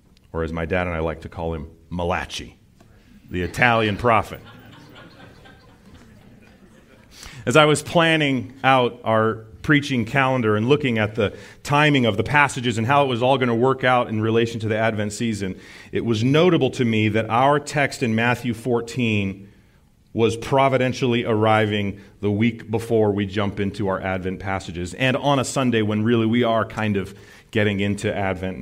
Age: 40-59